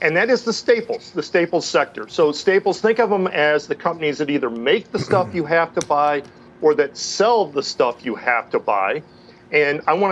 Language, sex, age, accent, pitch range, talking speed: English, male, 40-59, American, 135-180 Hz, 220 wpm